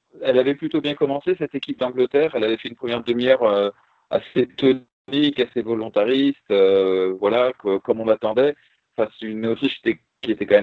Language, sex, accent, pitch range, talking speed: French, male, French, 105-135 Hz, 185 wpm